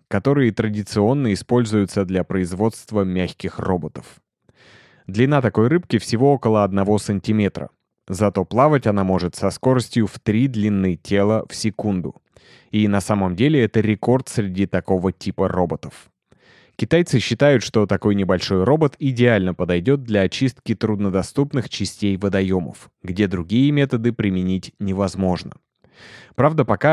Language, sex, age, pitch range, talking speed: Russian, male, 20-39, 95-120 Hz, 125 wpm